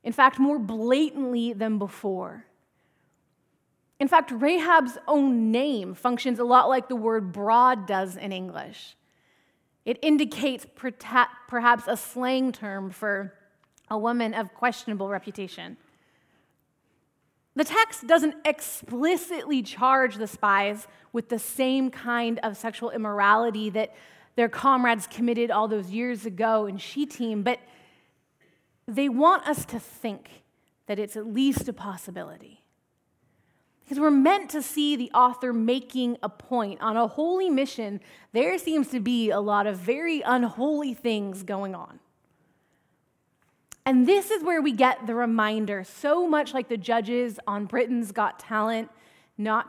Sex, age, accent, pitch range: female, 30-49, American, 215-270 Hz